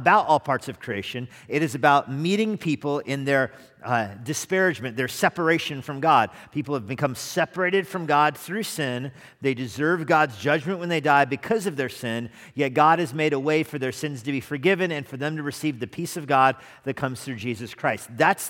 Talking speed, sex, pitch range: 210 wpm, male, 130-160 Hz